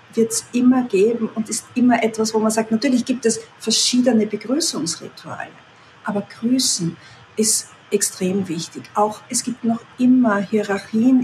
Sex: female